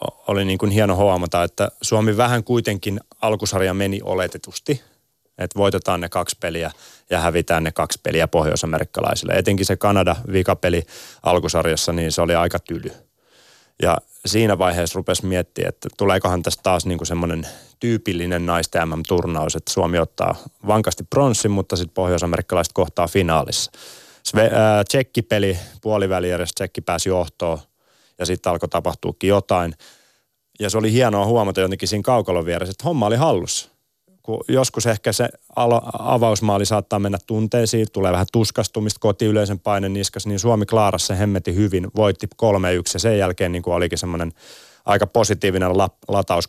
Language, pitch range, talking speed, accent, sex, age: Finnish, 90-105 Hz, 145 wpm, native, male, 30-49